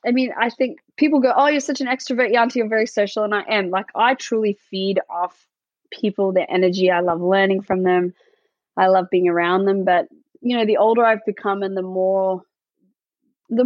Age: 20-39